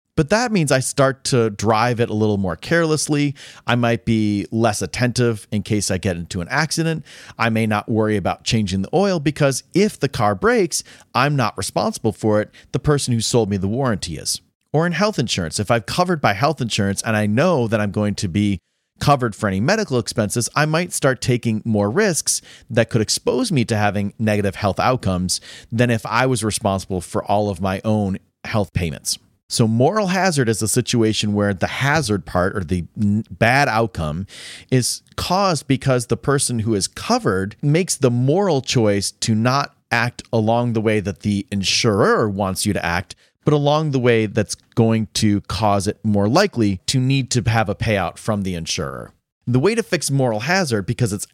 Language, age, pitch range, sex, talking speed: English, 30-49, 100-130 Hz, male, 195 wpm